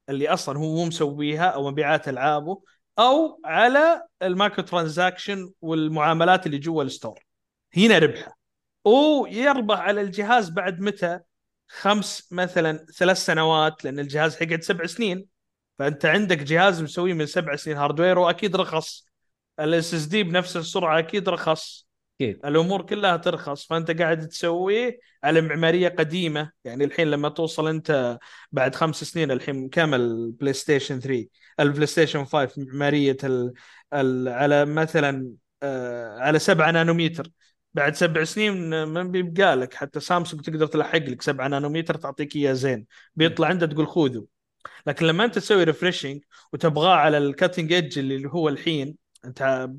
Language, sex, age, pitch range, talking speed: Arabic, male, 30-49, 145-180 Hz, 135 wpm